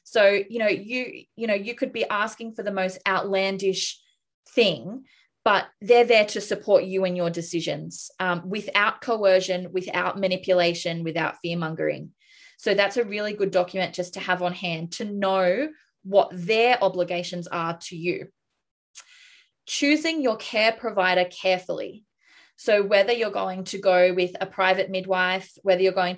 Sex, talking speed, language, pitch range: female, 155 wpm, English, 180-215 Hz